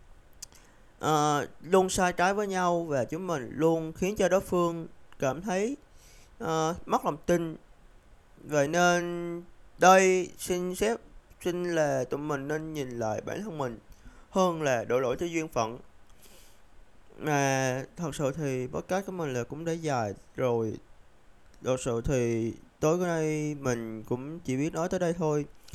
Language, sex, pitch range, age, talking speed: Vietnamese, male, 125-170 Hz, 20-39, 155 wpm